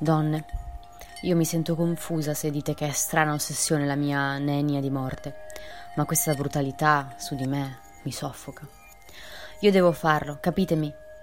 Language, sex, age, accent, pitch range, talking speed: Italian, female, 20-39, native, 140-180 Hz, 150 wpm